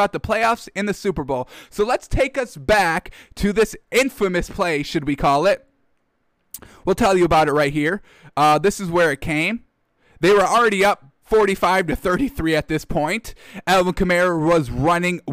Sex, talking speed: male, 180 wpm